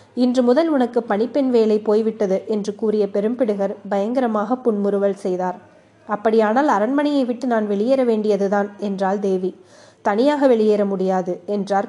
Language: Tamil